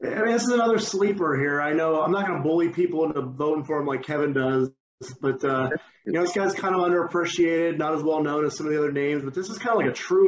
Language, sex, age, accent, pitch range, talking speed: English, male, 30-49, American, 150-180 Hz, 285 wpm